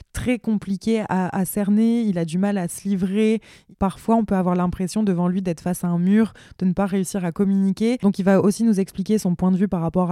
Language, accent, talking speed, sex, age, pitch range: French, French, 250 wpm, female, 20-39, 180-200 Hz